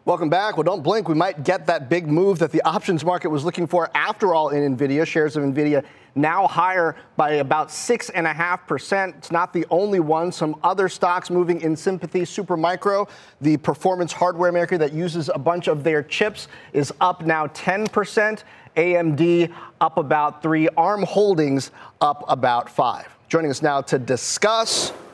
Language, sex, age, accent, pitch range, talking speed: English, male, 30-49, American, 155-195 Hz, 170 wpm